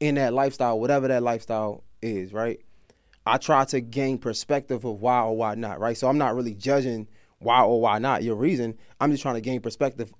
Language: English